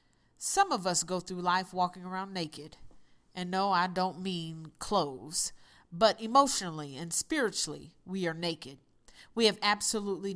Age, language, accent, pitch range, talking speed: 40-59, English, American, 170-225 Hz, 145 wpm